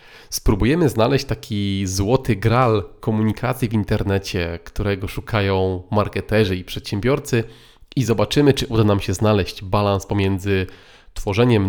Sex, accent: male, native